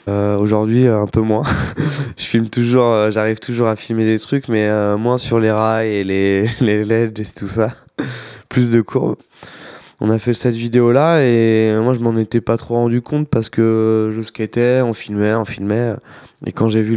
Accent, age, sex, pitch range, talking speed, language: French, 20-39, male, 105-115 Hz, 200 wpm, French